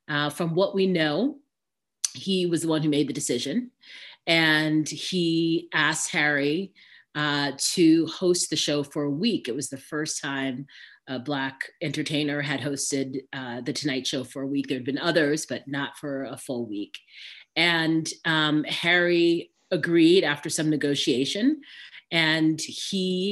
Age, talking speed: 30-49, 155 wpm